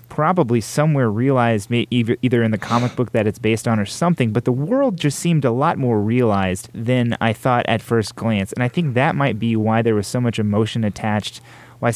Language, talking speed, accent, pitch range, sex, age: English, 220 wpm, American, 110-135 Hz, male, 30-49